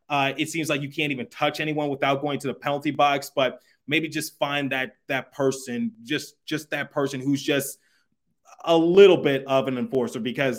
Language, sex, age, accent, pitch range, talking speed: English, male, 20-39, American, 140-170 Hz, 200 wpm